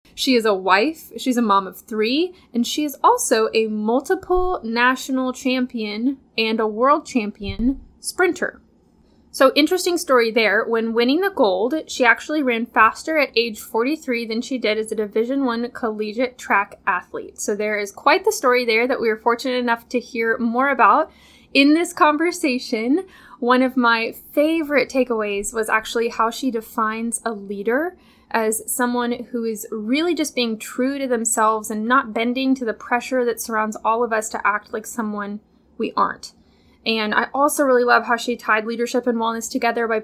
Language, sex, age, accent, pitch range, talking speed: English, female, 10-29, American, 225-265 Hz, 175 wpm